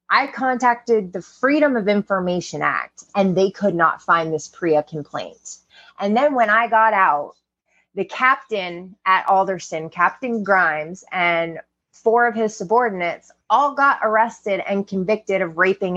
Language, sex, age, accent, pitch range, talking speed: English, female, 20-39, American, 175-220 Hz, 145 wpm